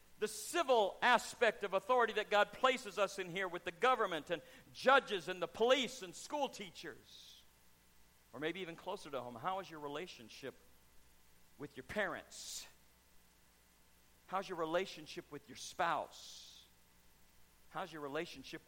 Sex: male